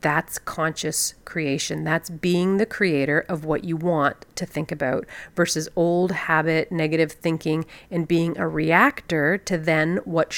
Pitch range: 160-200 Hz